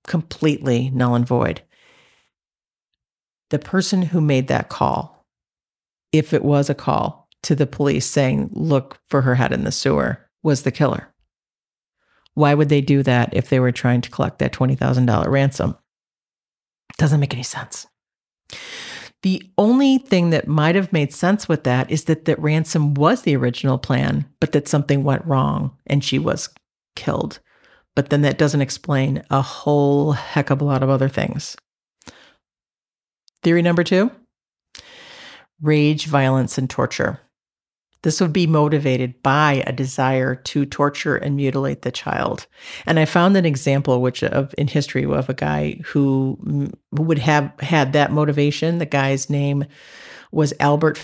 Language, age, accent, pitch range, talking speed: English, 50-69, American, 135-160 Hz, 155 wpm